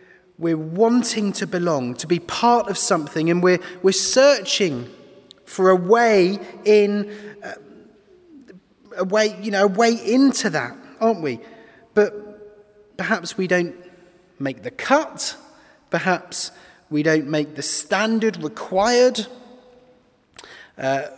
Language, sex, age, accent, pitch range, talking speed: English, male, 30-49, British, 160-225 Hz, 120 wpm